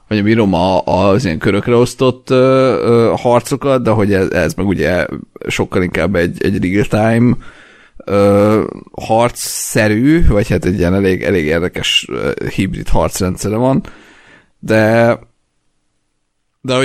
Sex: male